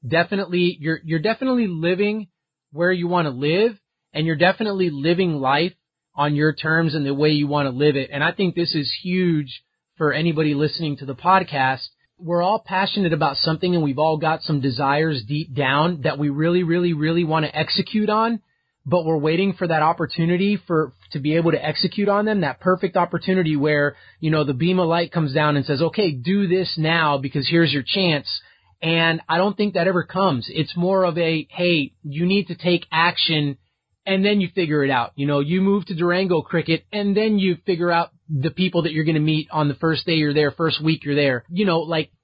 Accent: American